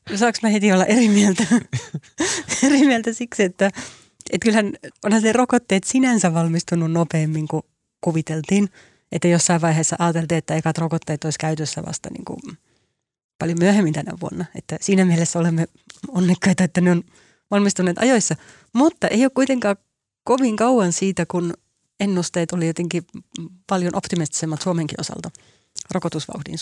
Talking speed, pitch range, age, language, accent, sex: 140 wpm, 165-205 Hz, 30-49, Finnish, native, female